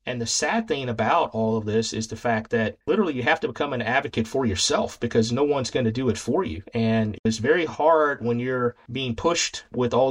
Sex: male